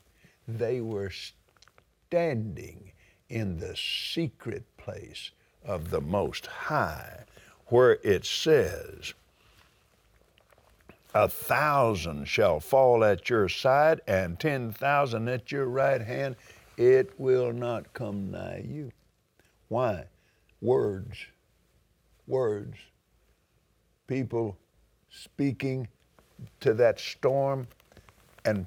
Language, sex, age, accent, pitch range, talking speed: English, male, 60-79, American, 95-135 Hz, 90 wpm